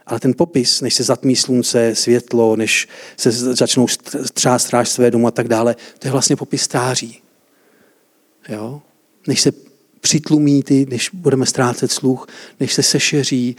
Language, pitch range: Czech, 120-155 Hz